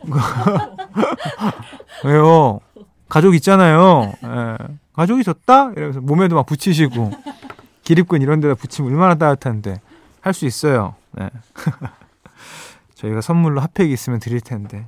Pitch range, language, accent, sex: 125-195 Hz, Korean, native, male